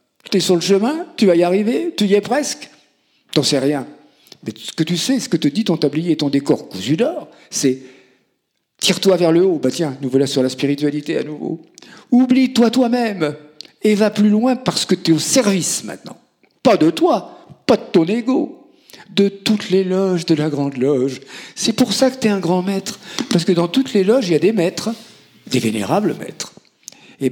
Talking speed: 215 wpm